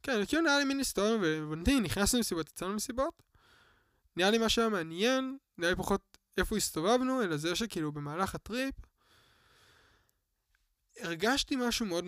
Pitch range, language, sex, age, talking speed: 160-225 Hz, Hebrew, male, 20-39, 140 wpm